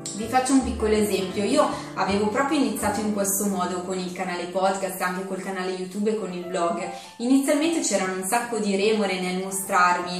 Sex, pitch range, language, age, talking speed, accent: female, 185-240 Hz, Italian, 20-39, 190 wpm, native